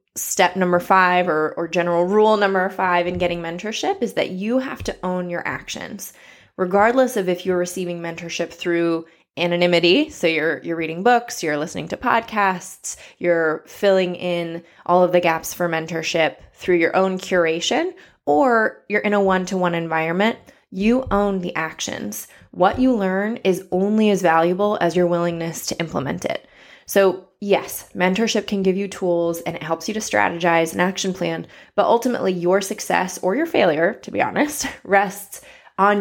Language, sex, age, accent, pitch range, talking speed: English, female, 20-39, American, 170-200 Hz, 170 wpm